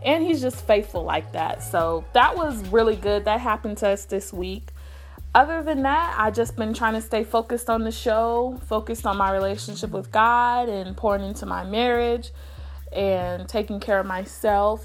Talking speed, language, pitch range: 185 wpm, English, 180-230 Hz